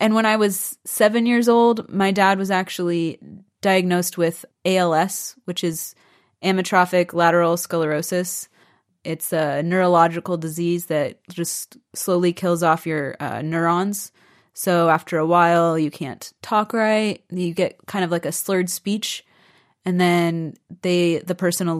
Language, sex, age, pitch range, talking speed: Czech, female, 20-39, 170-195 Hz, 145 wpm